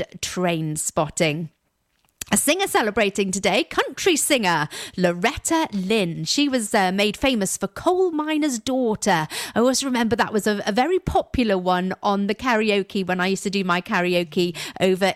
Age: 40-59